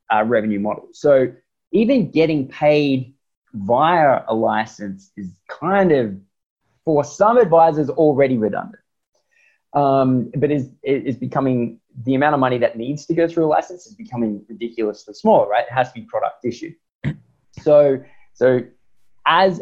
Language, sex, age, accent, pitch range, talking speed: English, male, 20-39, Australian, 120-165 Hz, 150 wpm